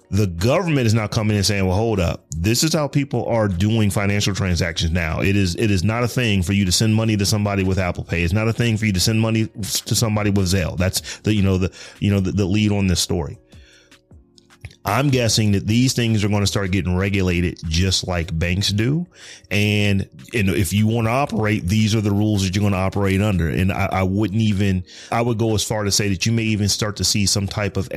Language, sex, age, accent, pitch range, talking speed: English, male, 30-49, American, 95-115 Hz, 250 wpm